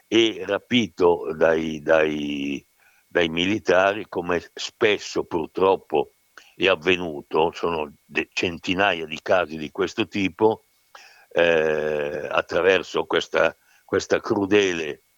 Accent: native